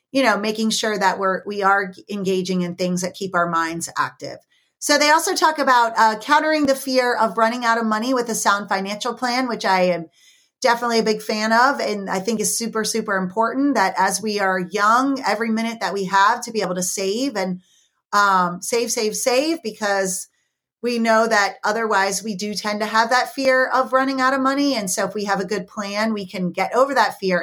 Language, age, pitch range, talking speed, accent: English, 30-49, 190-250 Hz, 225 wpm, American